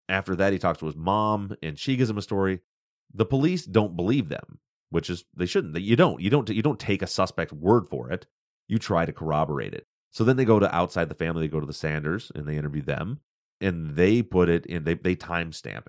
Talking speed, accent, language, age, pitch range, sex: 240 wpm, American, English, 30-49, 85-105 Hz, male